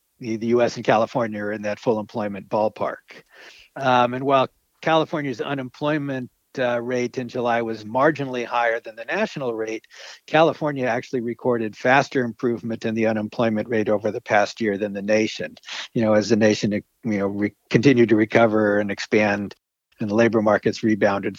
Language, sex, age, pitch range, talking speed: English, male, 60-79, 110-130 Hz, 170 wpm